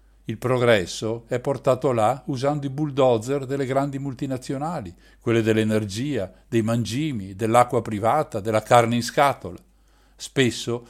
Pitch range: 110-145 Hz